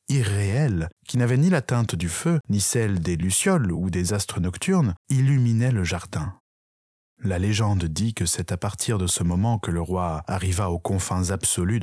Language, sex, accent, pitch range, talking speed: French, male, French, 90-120 Hz, 185 wpm